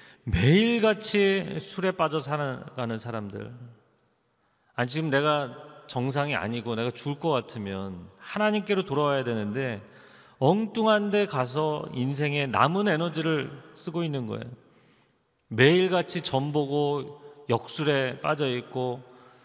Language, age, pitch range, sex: Korean, 40-59, 115-155 Hz, male